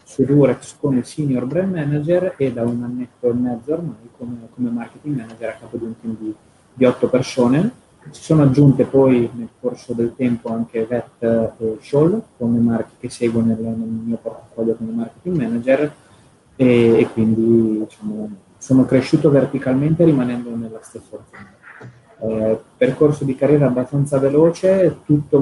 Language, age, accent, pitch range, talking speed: Italian, 20-39, native, 115-130 Hz, 155 wpm